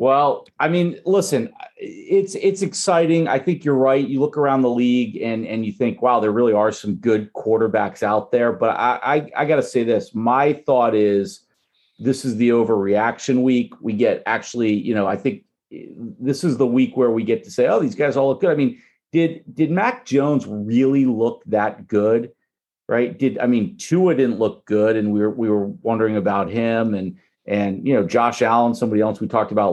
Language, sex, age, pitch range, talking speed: English, male, 40-59, 105-135 Hz, 210 wpm